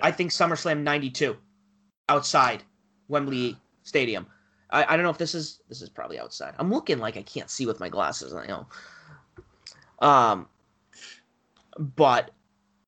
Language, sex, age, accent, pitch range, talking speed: English, male, 30-49, American, 130-175 Hz, 155 wpm